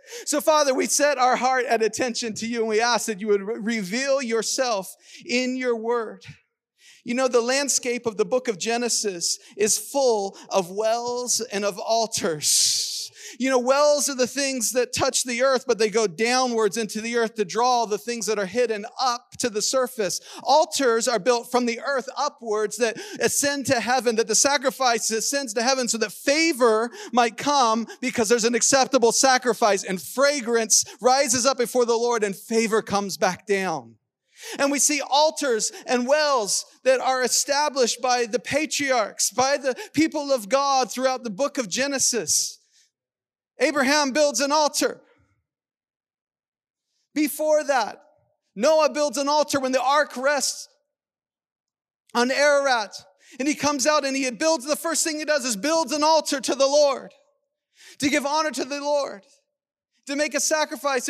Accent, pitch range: American, 235-290 Hz